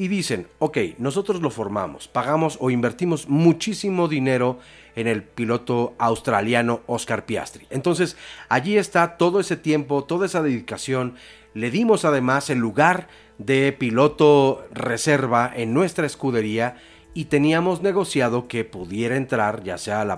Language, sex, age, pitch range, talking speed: Spanish, male, 40-59, 115-150 Hz, 135 wpm